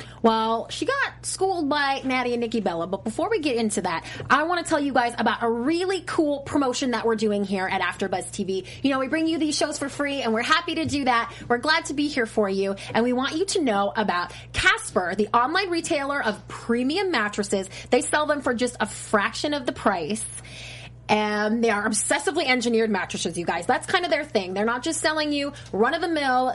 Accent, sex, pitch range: American, female, 205-310 Hz